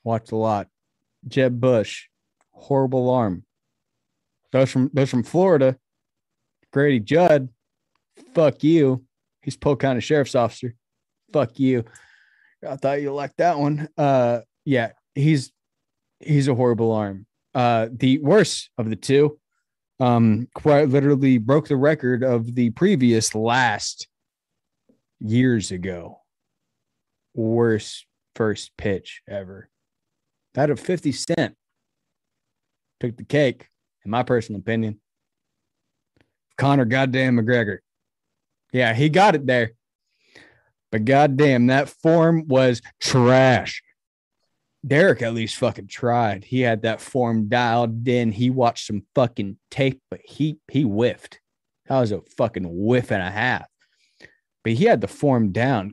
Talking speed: 125 wpm